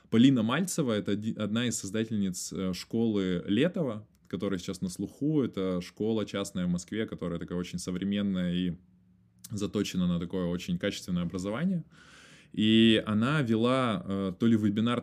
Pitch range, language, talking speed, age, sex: 95-125 Hz, Russian, 135 wpm, 20-39, male